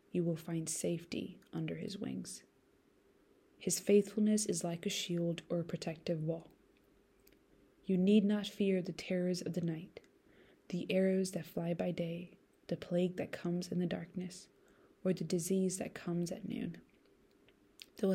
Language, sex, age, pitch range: English, female, 20-39, 170-195 Hz